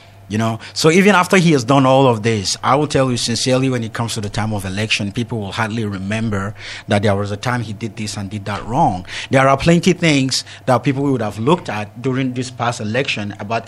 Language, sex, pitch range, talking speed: English, male, 110-140 Hz, 245 wpm